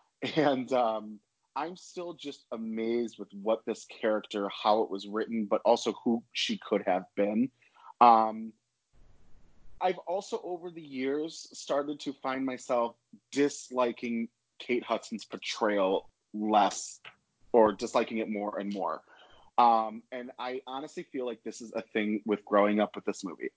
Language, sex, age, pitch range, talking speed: English, male, 30-49, 110-135 Hz, 150 wpm